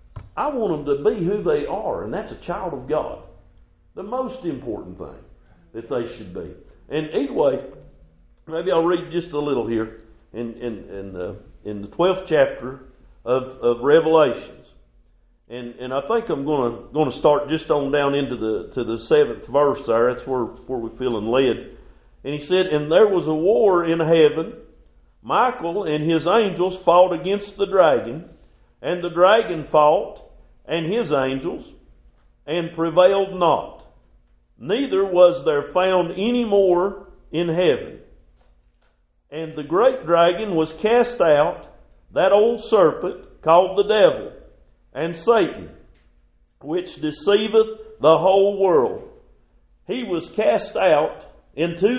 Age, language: 50-69, English